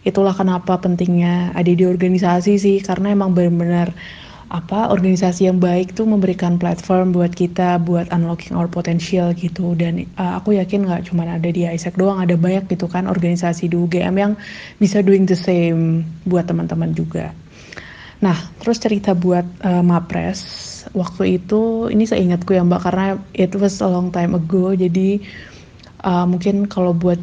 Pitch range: 175-195 Hz